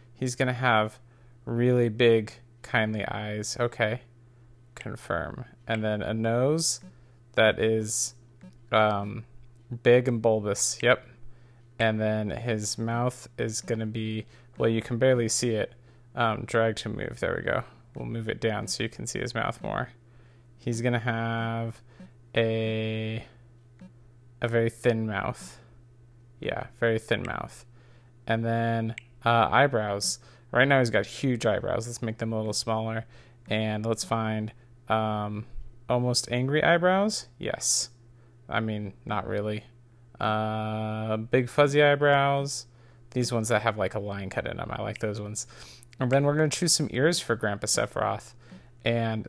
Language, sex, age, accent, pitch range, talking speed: English, male, 20-39, American, 110-120 Hz, 145 wpm